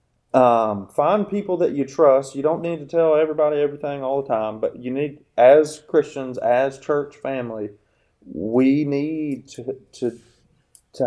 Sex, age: male, 30-49